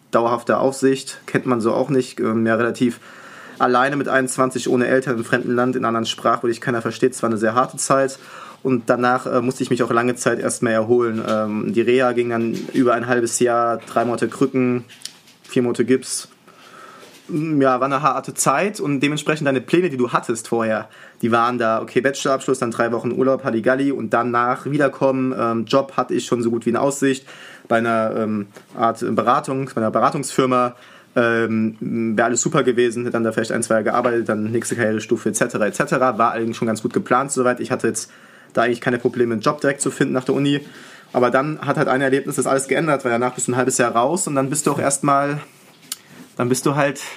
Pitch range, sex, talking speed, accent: 115-135 Hz, male, 215 wpm, German